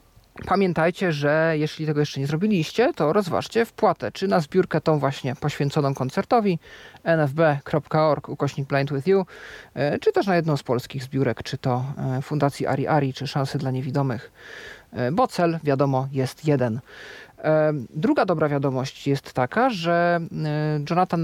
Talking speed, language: 140 wpm, Polish